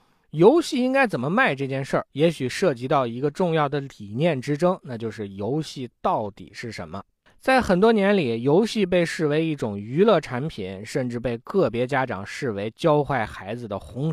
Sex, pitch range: male, 125-195 Hz